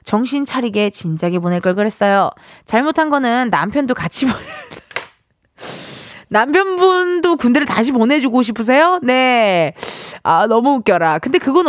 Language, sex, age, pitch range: Korean, female, 20-39, 190-280 Hz